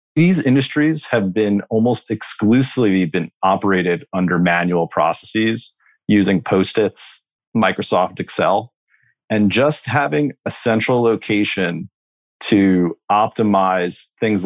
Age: 40-59